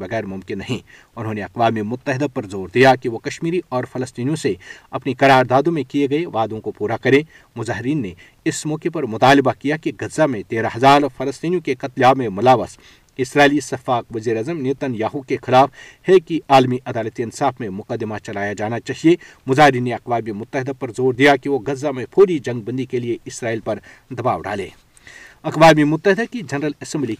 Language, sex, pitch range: Urdu, male, 120-145 Hz